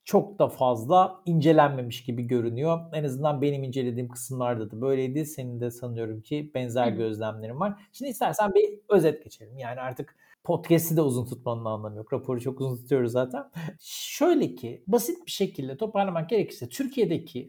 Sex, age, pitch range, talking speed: male, 50-69, 145-220 Hz, 160 wpm